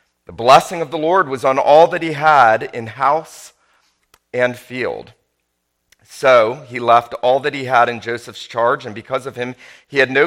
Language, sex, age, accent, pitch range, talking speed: English, male, 40-59, American, 115-145 Hz, 185 wpm